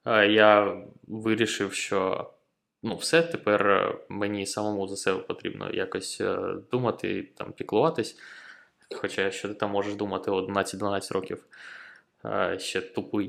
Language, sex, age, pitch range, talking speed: Ukrainian, male, 20-39, 100-125 Hz, 115 wpm